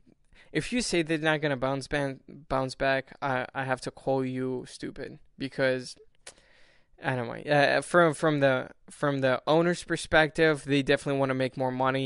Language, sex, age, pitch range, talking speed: English, male, 10-29, 130-145 Hz, 150 wpm